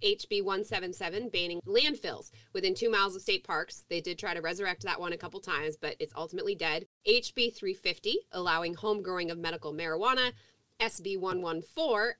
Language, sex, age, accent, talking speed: English, female, 20-39, American, 165 wpm